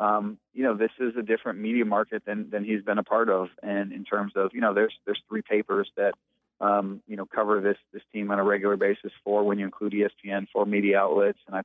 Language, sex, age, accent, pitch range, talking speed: English, male, 30-49, American, 100-110 Hz, 245 wpm